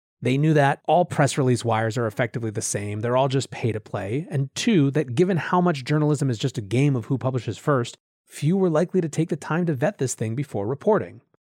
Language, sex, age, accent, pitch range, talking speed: English, male, 30-49, American, 130-180 Hz, 235 wpm